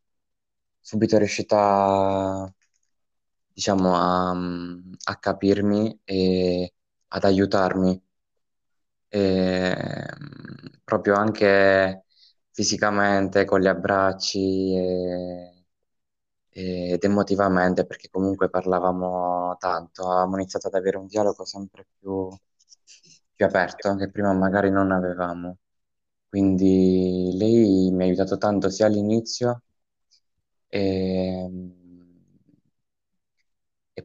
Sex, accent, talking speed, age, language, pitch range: male, native, 80 wpm, 20-39, Italian, 90-100 Hz